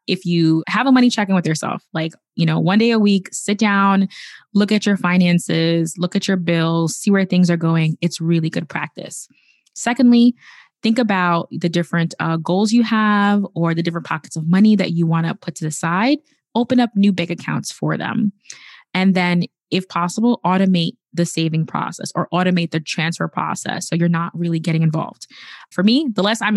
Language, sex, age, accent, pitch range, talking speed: English, female, 20-39, American, 170-225 Hz, 200 wpm